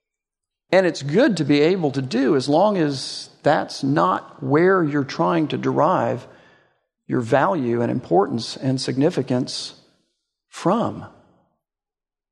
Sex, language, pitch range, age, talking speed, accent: male, English, 150-195 Hz, 50-69, 120 wpm, American